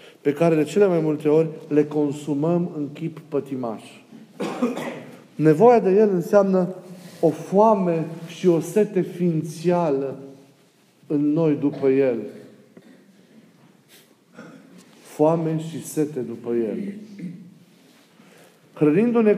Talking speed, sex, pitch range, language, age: 100 wpm, male, 150-195 Hz, Romanian, 40-59